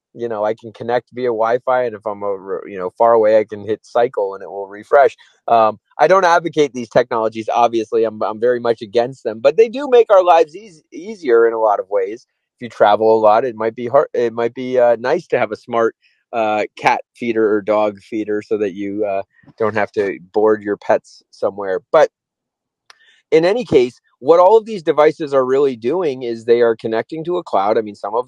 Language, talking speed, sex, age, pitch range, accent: English, 225 wpm, male, 30-49, 110-150 Hz, American